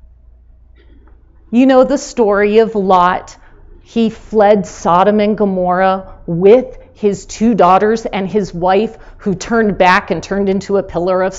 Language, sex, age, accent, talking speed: English, female, 40-59, American, 140 wpm